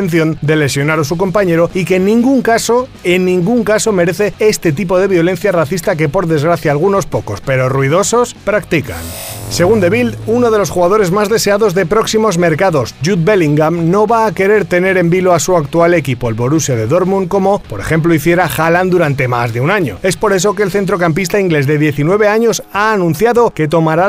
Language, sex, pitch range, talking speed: Spanish, male, 150-200 Hz, 200 wpm